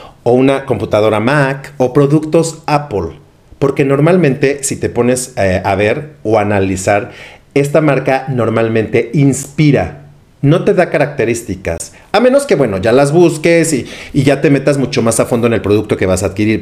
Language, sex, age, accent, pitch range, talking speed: Spanish, male, 40-59, Mexican, 110-145 Hz, 175 wpm